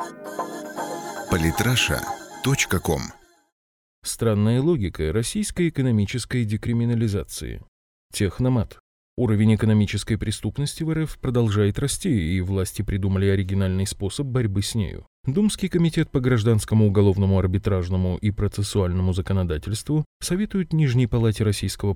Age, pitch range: 20-39, 95-125 Hz